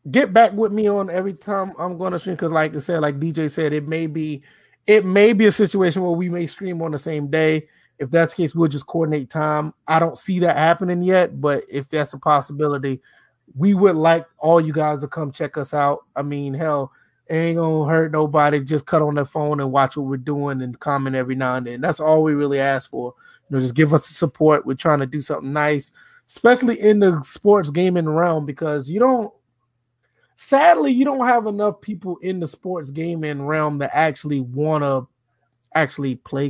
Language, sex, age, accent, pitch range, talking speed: English, male, 20-39, American, 140-170 Hz, 220 wpm